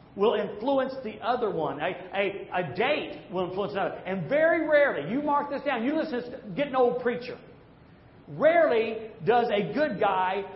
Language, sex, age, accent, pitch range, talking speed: English, male, 40-59, American, 205-280 Hz, 180 wpm